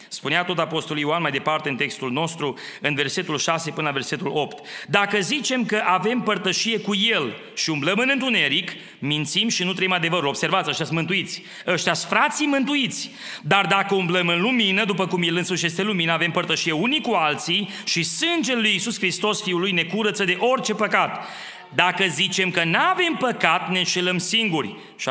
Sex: male